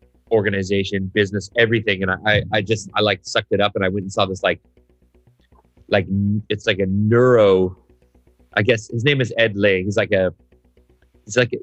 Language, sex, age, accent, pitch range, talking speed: English, male, 30-49, American, 90-110 Hz, 185 wpm